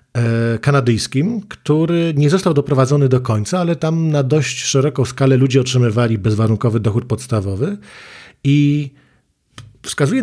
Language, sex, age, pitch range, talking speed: Polish, male, 40-59, 125-145 Hz, 115 wpm